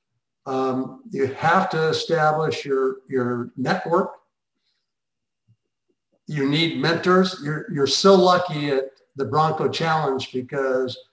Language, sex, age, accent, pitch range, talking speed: English, male, 60-79, American, 130-160 Hz, 110 wpm